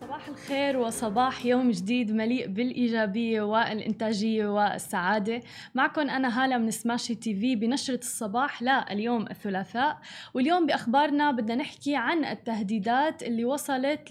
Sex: female